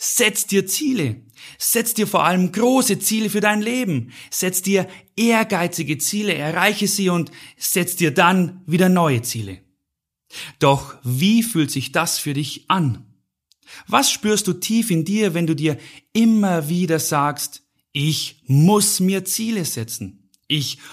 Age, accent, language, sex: 30-49, German, German, male